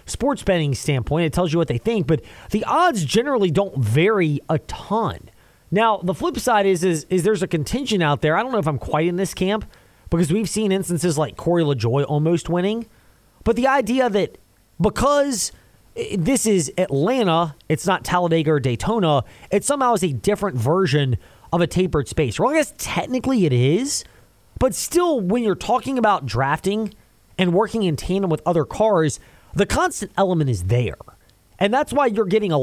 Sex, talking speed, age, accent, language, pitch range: male, 185 wpm, 20-39, American, English, 145-205 Hz